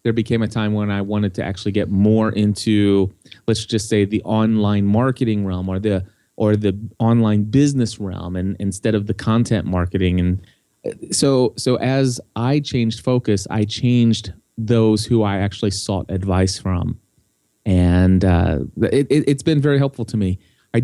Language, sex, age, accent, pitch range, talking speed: English, male, 30-49, American, 100-120 Hz, 170 wpm